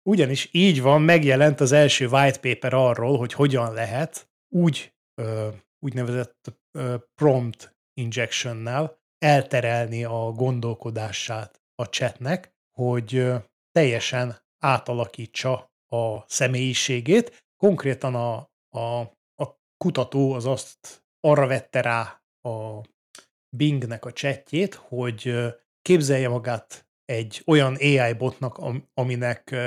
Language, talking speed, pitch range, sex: Hungarian, 95 wpm, 120-150 Hz, male